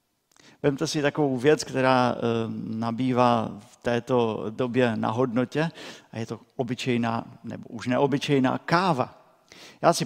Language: Czech